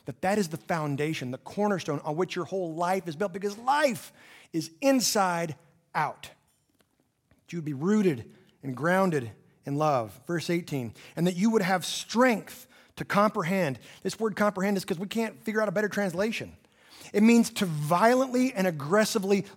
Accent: American